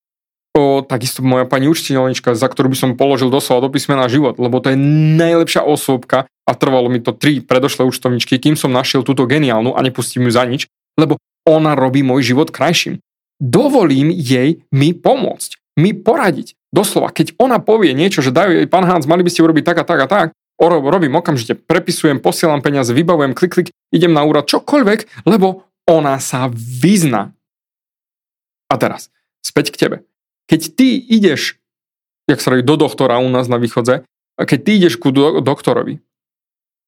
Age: 30-49